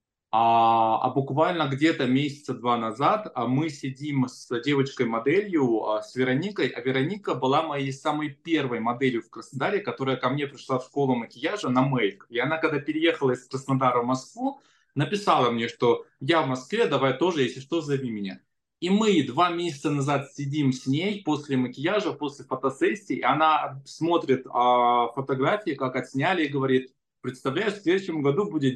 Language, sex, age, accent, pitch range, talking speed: Russian, male, 20-39, native, 125-150 Hz, 155 wpm